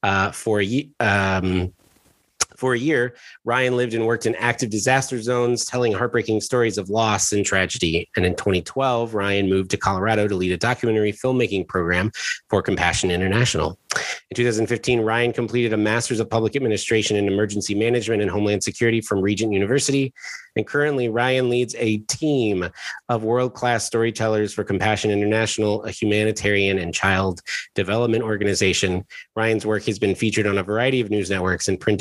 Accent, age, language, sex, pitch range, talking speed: American, 30-49, English, male, 105-130 Hz, 160 wpm